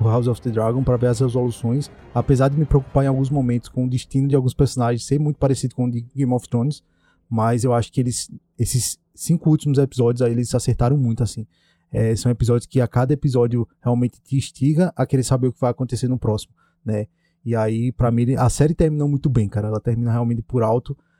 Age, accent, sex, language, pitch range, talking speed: 20-39, Brazilian, male, Portuguese, 120-145 Hz, 225 wpm